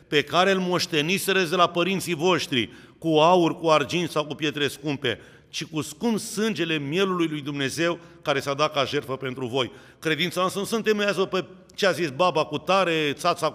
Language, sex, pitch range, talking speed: Romanian, male, 145-180 Hz, 185 wpm